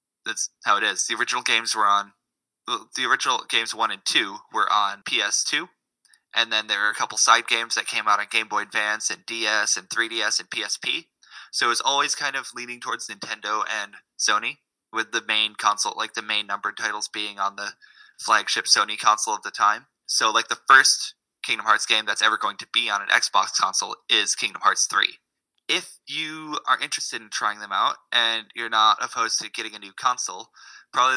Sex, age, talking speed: male, 20-39, 205 wpm